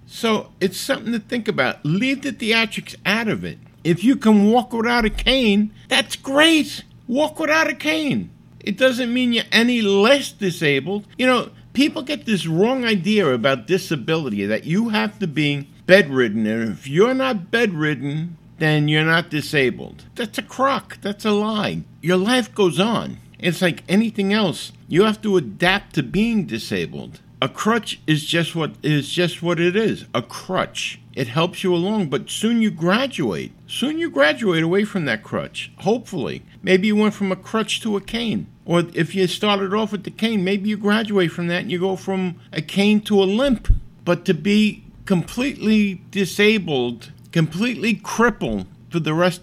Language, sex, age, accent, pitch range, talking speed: English, male, 50-69, American, 160-220 Hz, 175 wpm